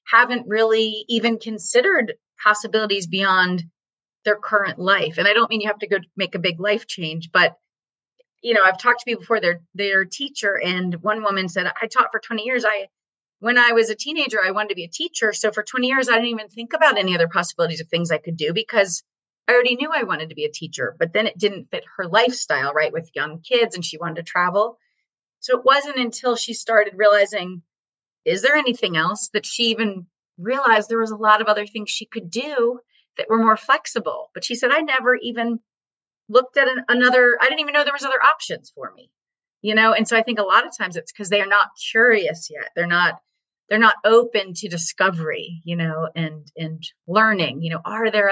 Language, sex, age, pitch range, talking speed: English, female, 30-49, 180-230 Hz, 220 wpm